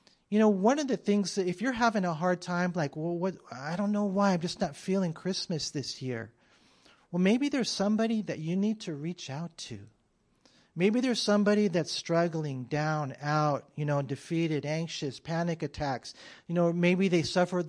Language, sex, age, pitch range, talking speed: English, male, 40-59, 155-205 Hz, 185 wpm